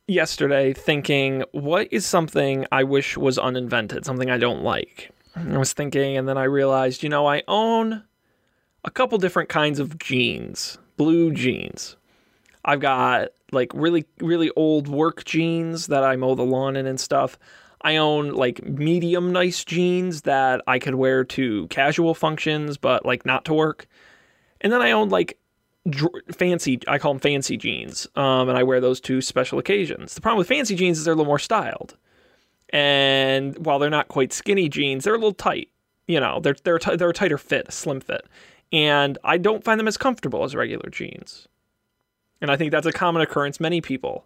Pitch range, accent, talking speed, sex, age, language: 135-175 Hz, American, 185 wpm, male, 20-39, English